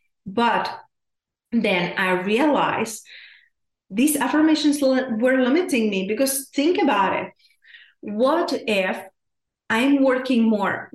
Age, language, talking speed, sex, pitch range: 30-49, English, 100 wpm, female, 195-250 Hz